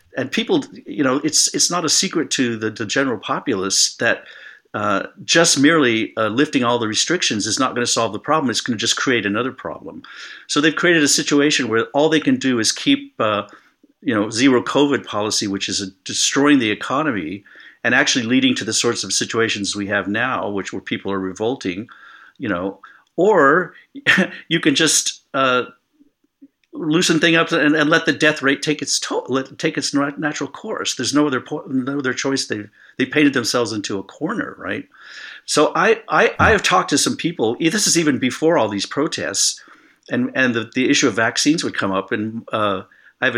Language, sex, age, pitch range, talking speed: English, male, 50-69, 110-160 Hz, 200 wpm